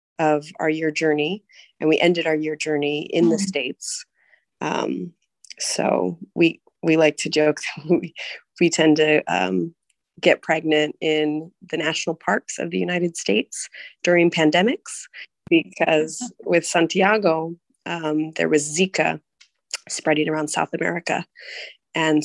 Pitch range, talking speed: 155-195 Hz, 135 wpm